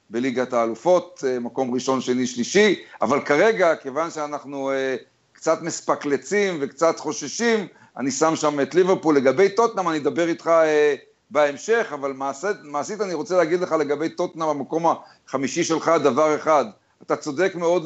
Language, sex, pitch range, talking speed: Hebrew, male, 140-180 Hz, 140 wpm